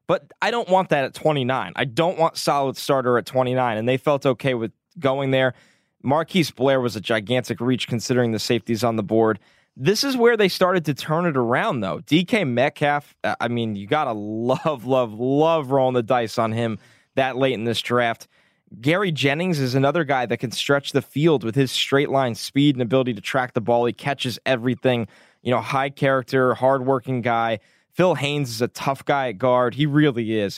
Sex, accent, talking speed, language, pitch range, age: male, American, 205 wpm, English, 120-145 Hz, 20-39